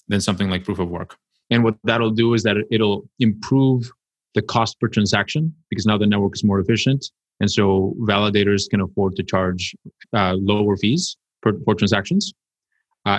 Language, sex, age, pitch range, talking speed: English, male, 30-49, 100-120 Hz, 180 wpm